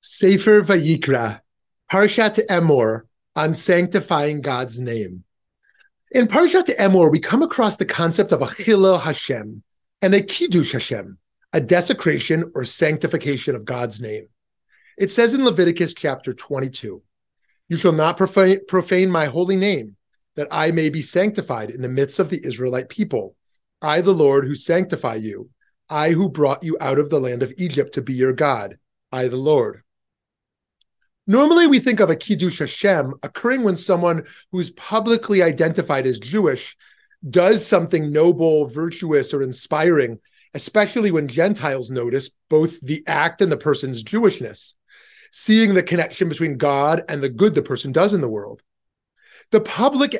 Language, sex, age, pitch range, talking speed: English, male, 30-49, 140-200 Hz, 155 wpm